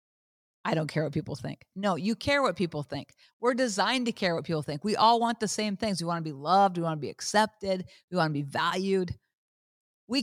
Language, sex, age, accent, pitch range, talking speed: English, female, 50-69, American, 165-235 Hz, 240 wpm